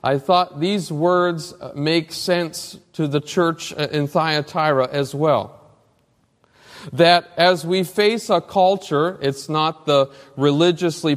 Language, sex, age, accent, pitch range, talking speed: English, male, 40-59, American, 135-180 Hz, 125 wpm